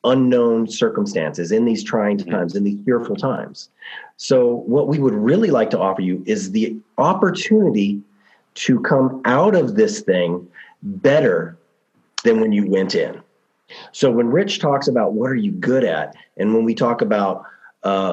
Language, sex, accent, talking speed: English, male, American, 165 wpm